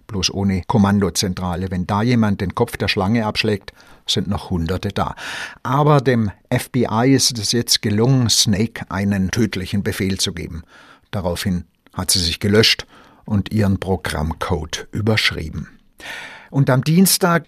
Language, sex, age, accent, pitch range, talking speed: German, male, 60-79, German, 95-125 Hz, 135 wpm